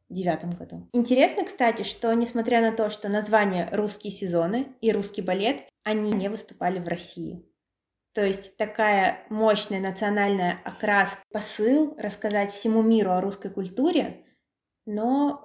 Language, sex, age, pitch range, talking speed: Russian, female, 20-39, 200-235 Hz, 130 wpm